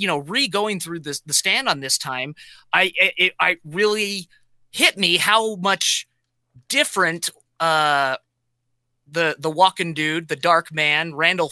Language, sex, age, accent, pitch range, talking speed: English, male, 20-39, American, 150-190 Hz, 145 wpm